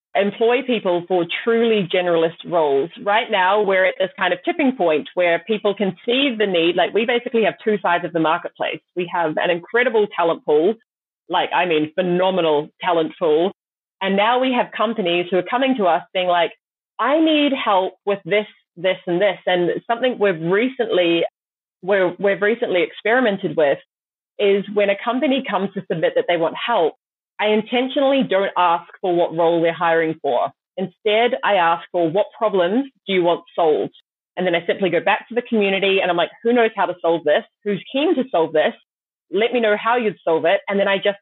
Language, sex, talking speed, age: English, female, 200 wpm, 30-49